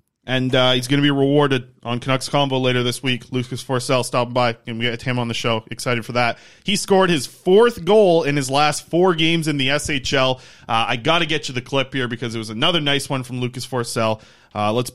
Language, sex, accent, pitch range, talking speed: English, male, American, 125-160 Hz, 240 wpm